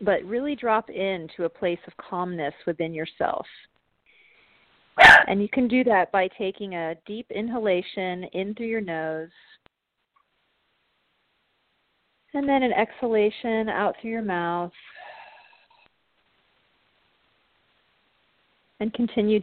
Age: 40-59